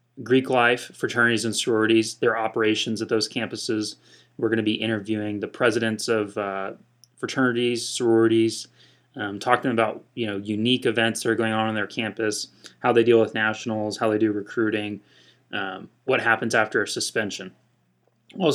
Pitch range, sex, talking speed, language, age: 105-120 Hz, male, 165 wpm, English, 20-39